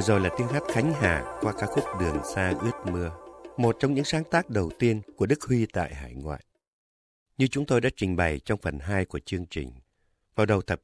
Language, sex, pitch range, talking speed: Vietnamese, male, 90-130 Hz, 225 wpm